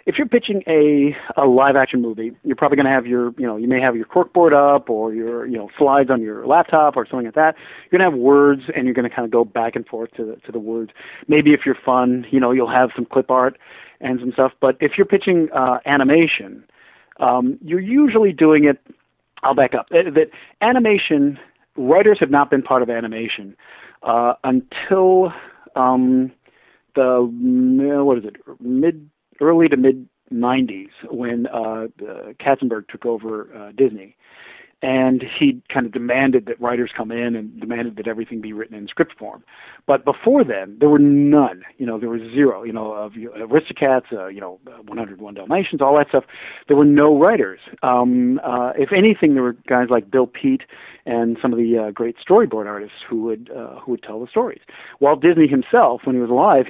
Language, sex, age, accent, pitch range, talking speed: English, male, 40-59, American, 120-150 Hz, 200 wpm